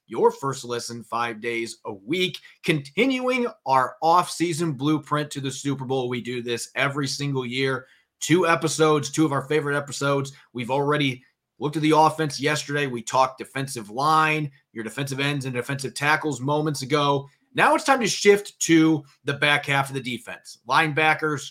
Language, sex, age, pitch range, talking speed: English, male, 30-49, 125-155 Hz, 165 wpm